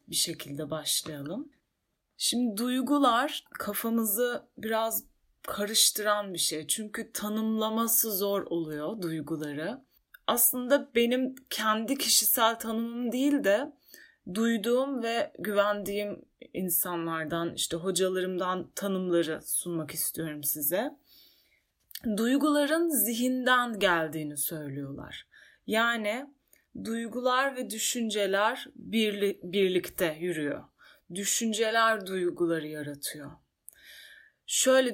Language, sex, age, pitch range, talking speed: Turkish, female, 30-49, 175-240 Hz, 80 wpm